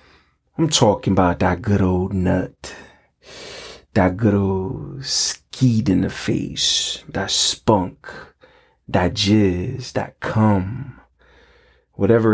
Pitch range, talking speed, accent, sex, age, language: 95-115 Hz, 100 wpm, American, male, 30-49, English